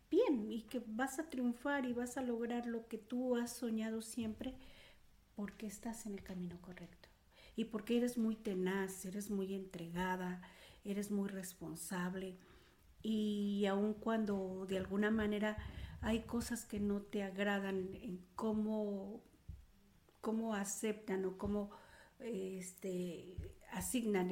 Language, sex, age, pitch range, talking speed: Spanish, female, 50-69, 195-225 Hz, 130 wpm